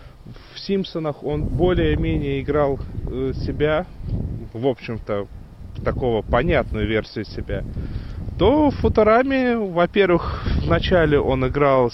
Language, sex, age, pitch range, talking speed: Russian, male, 30-49, 110-160 Hz, 95 wpm